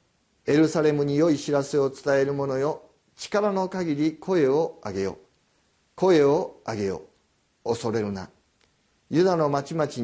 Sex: male